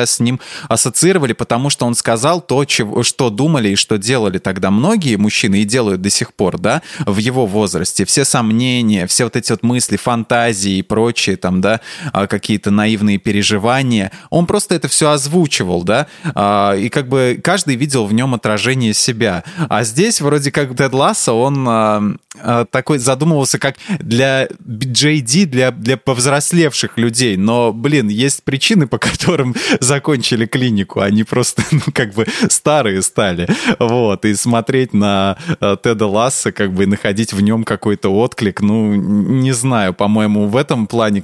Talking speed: 155 wpm